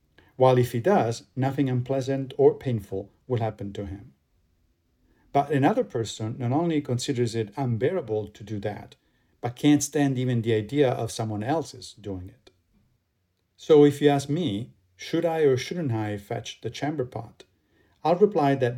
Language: English